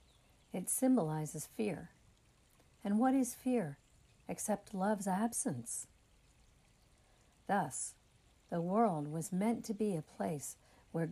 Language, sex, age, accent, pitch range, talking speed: English, female, 60-79, American, 150-215 Hz, 110 wpm